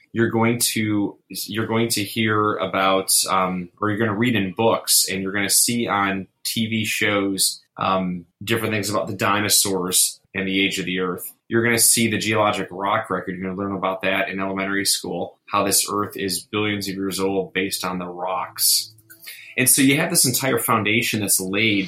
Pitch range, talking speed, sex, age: 95-120 Hz, 205 wpm, male, 20-39